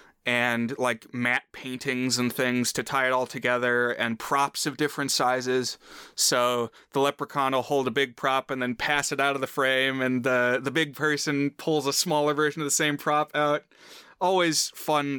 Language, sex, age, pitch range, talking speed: English, male, 20-39, 125-150 Hz, 190 wpm